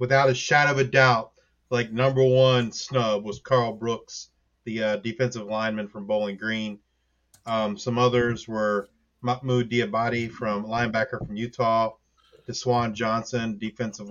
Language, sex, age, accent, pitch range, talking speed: English, male, 30-49, American, 110-130 Hz, 140 wpm